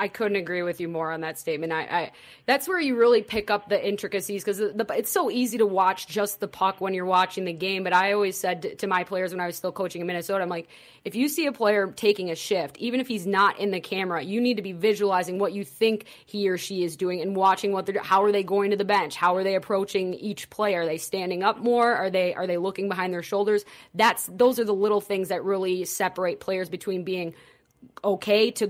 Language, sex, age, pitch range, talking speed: English, female, 20-39, 180-215 Hz, 255 wpm